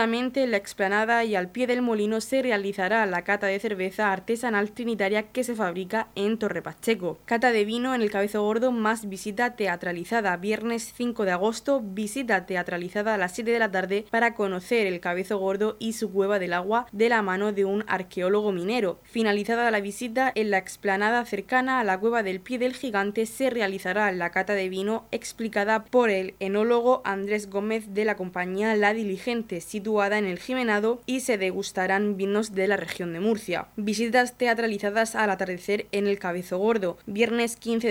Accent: Spanish